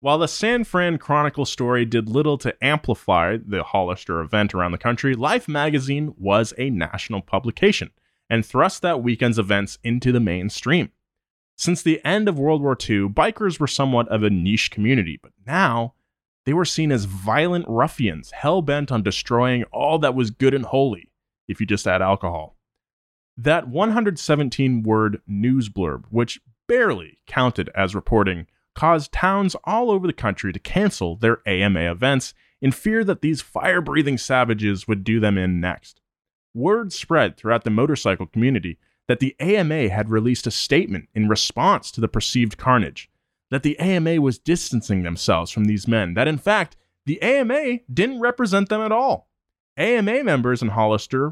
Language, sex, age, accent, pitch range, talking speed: English, male, 30-49, American, 105-160 Hz, 165 wpm